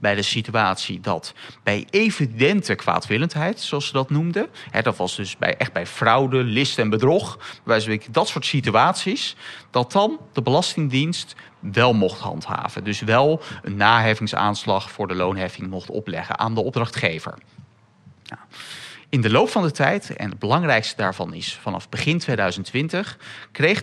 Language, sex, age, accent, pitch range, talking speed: Dutch, male, 30-49, Dutch, 105-155 Hz, 145 wpm